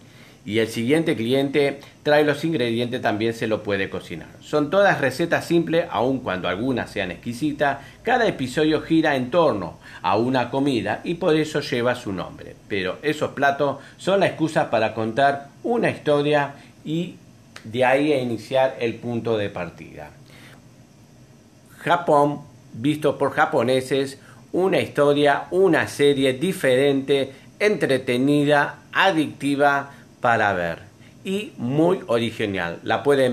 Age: 40-59